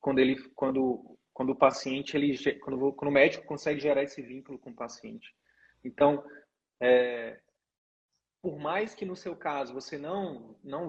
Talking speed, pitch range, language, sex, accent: 155 wpm, 135-180 Hz, Portuguese, male, Brazilian